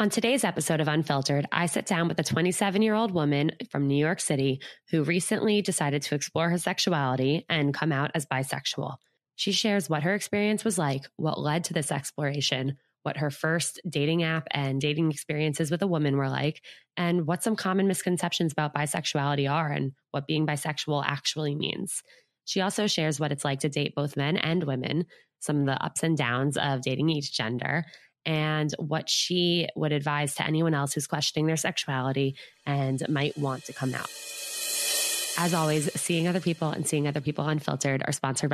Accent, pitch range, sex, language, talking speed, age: American, 140-175 Hz, female, English, 185 wpm, 20-39